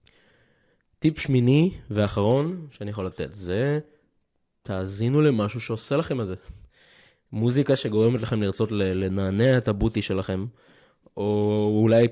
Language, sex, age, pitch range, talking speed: Hebrew, male, 20-39, 95-125 Hz, 115 wpm